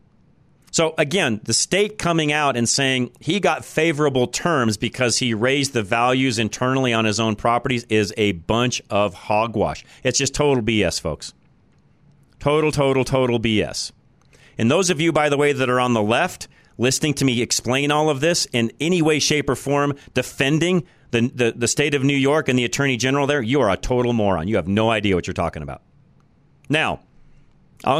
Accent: American